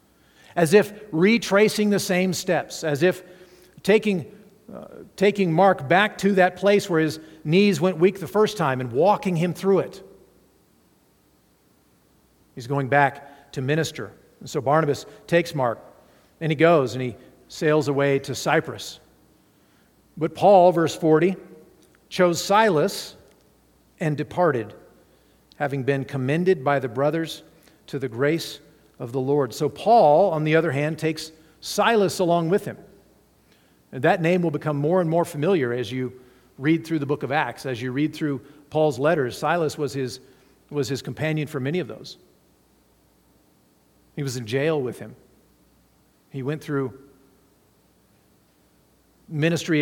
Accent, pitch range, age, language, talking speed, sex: American, 135-175 Hz, 50-69, English, 150 wpm, male